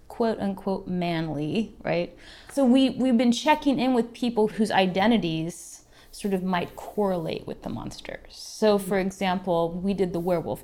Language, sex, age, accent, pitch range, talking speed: English, female, 30-49, American, 175-215 Hz, 160 wpm